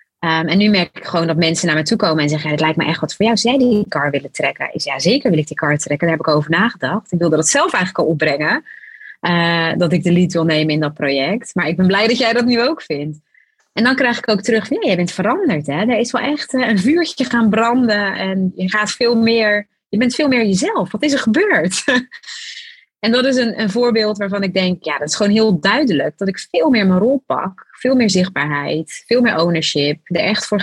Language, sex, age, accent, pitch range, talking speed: Dutch, female, 30-49, Dutch, 170-225 Hz, 260 wpm